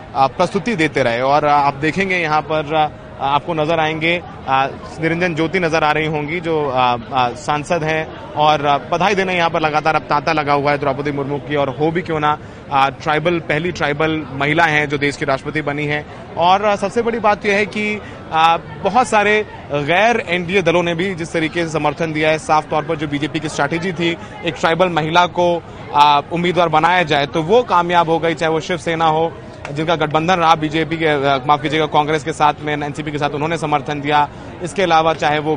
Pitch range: 150-175 Hz